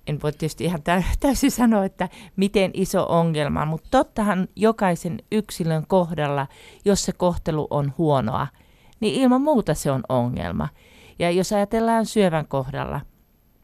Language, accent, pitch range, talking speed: Finnish, native, 135-185 Hz, 135 wpm